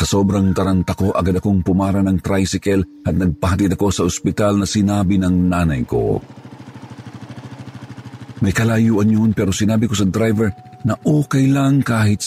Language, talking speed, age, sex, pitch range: Filipino, 145 wpm, 50-69, male, 85-120 Hz